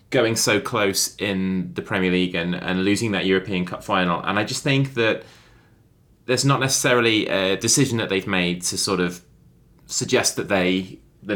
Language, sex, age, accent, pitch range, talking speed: English, male, 20-39, British, 95-130 Hz, 175 wpm